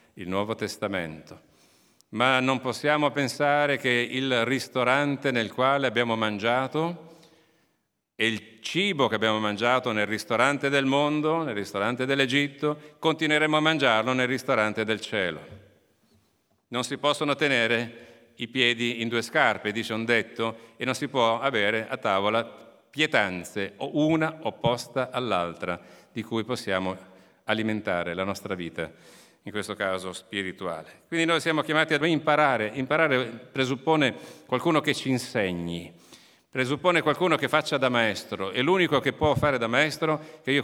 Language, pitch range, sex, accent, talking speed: Italian, 110-145 Hz, male, native, 140 wpm